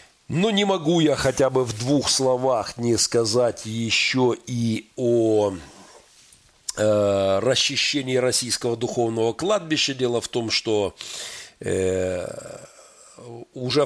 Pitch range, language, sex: 105-130 Hz, Russian, male